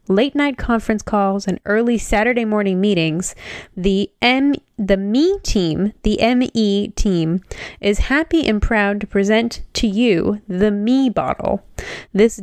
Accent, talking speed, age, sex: American, 135 wpm, 10-29, female